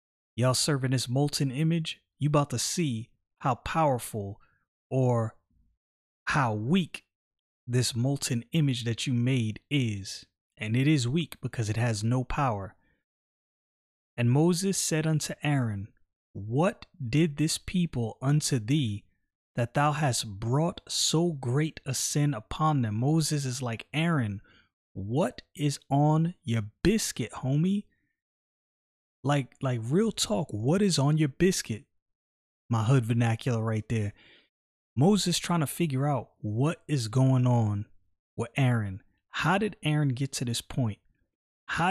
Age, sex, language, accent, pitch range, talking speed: 30-49, male, English, American, 115-150 Hz, 135 wpm